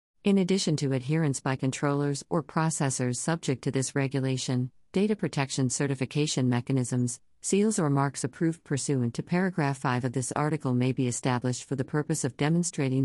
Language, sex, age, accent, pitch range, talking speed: English, female, 50-69, American, 130-155 Hz, 160 wpm